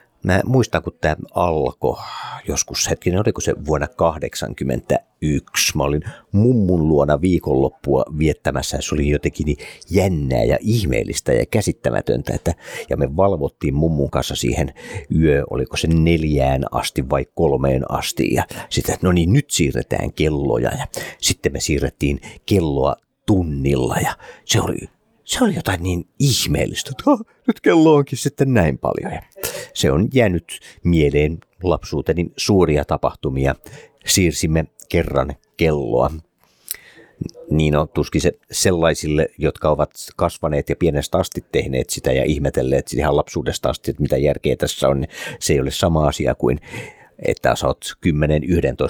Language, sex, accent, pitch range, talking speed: Finnish, male, native, 70-95 Hz, 135 wpm